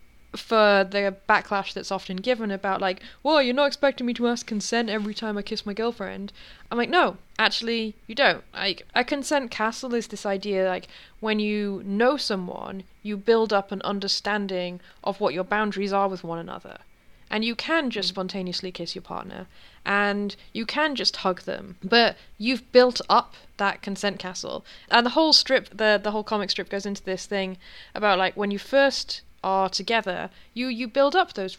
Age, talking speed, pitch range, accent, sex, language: 20-39, 190 wpm, 195-240 Hz, British, female, English